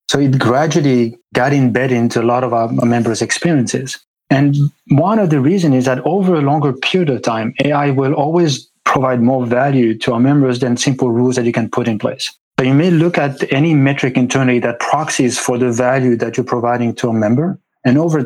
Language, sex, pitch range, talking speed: English, male, 120-140 Hz, 210 wpm